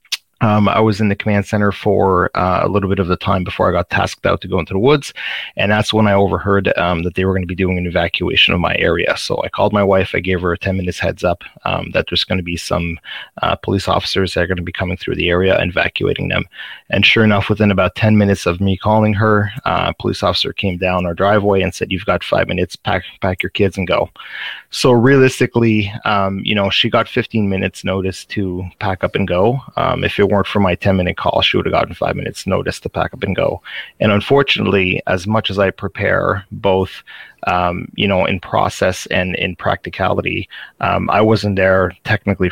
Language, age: English, 30-49